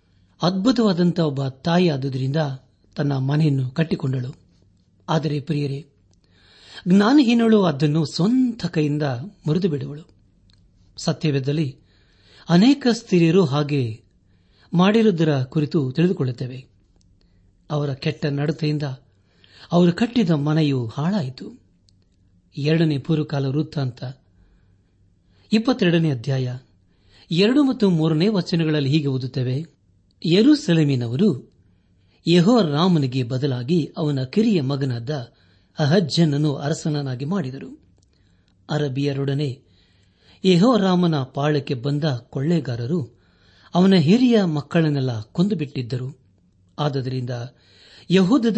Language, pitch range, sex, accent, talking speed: Kannada, 105-170 Hz, male, native, 75 wpm